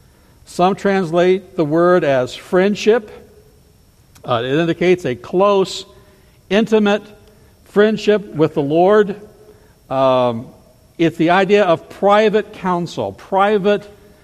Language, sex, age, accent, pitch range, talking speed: English, male, 60-79, American, 125-190 Hz, 100 wpm